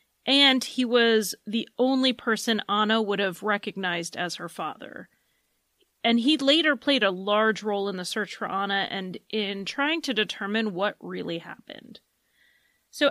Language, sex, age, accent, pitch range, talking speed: English, female, 30-49, American, 200-260 Hz, 155 wpm